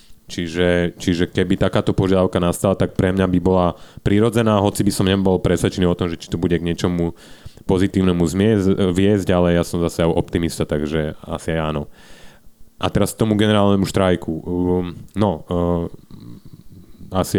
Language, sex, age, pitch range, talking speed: Slovak, male, 30-49, 85-105 Hz, 155 wpm